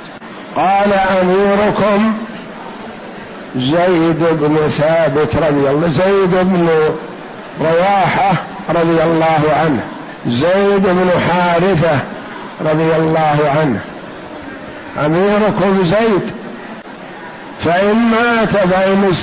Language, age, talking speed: Arabic, 60-79, 80 wpm